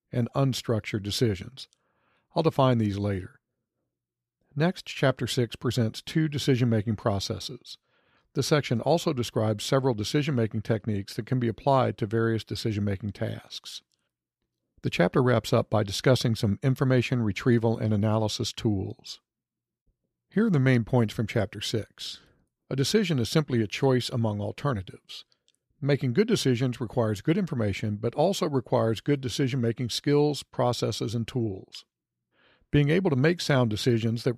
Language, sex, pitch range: English, male, 110-135 Hz